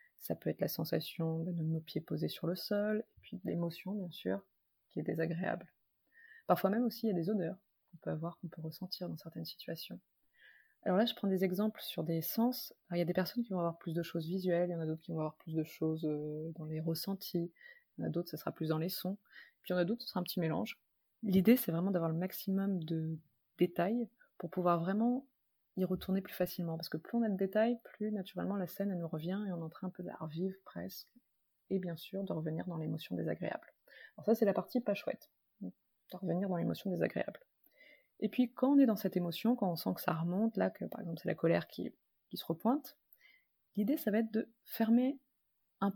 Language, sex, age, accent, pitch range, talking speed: French, female, 20-39, French, 165-215 Hz, 240 wpm